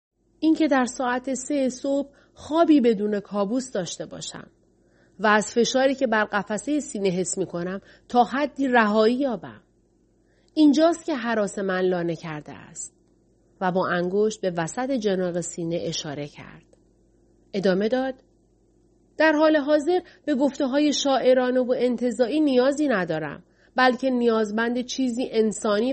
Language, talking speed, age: Persian, 135 wpm, 30-49